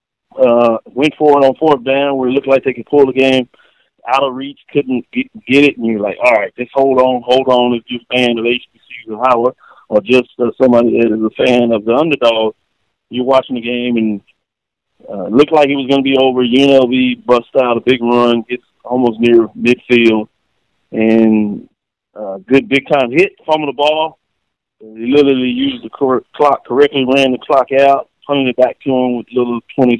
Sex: male